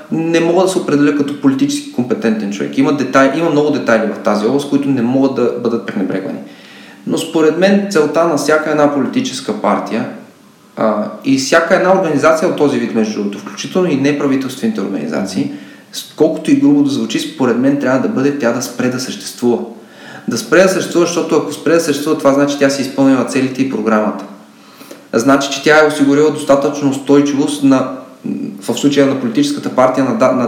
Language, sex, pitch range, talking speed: Bulgarian, male, 135-175 Hz, 185 wpm